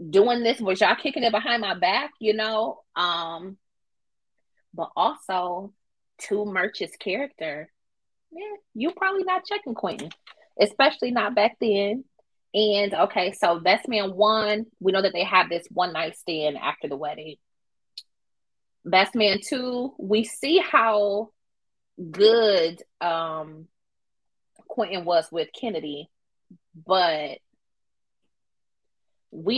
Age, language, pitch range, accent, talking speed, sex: 20-39, English, 175-240 Hz, American, 120 wpm, female